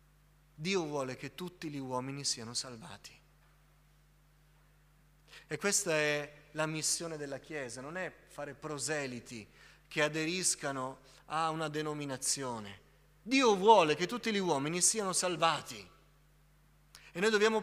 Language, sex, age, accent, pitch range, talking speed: Italian, male, 30-49, native, 150-220 Hz, 120 wpm